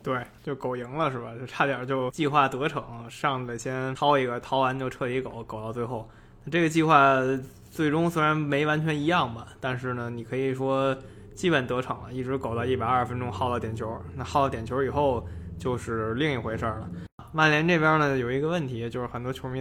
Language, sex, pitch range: Chinese, male, 120-145 Hz